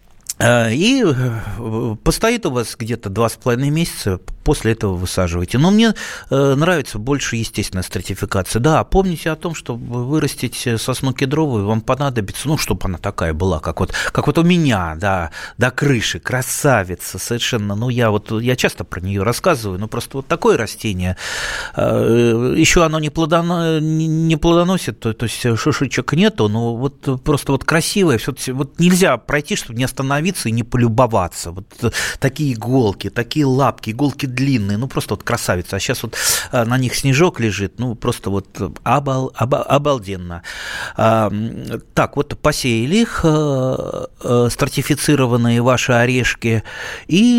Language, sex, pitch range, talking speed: Russian, male, 110-150 Hz, 135 wpm